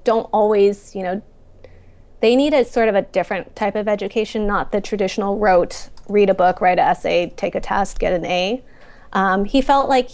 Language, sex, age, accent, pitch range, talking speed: English, female, 20-39, American, 195-225 Hz, 200 wpm